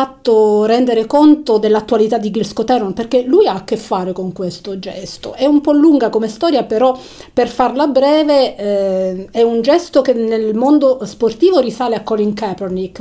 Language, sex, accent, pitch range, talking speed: Italian, female, native, 200-235 Hz, 175 wpm